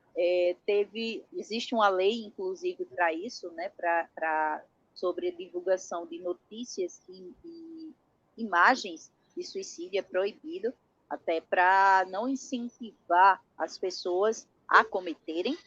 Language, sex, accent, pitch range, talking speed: Portuguese, female, Brazilian, 195-290 Hz, 105 wpm